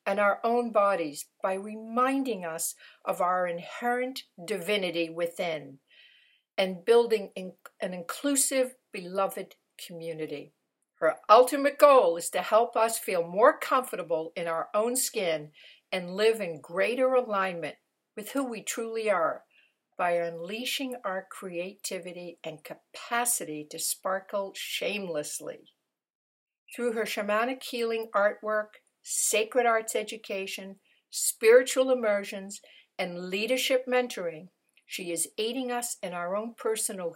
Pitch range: 180-240 Hz